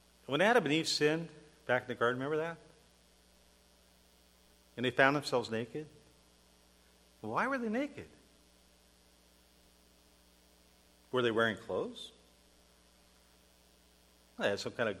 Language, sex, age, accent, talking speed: English, male, 50-69, American, 115 wpm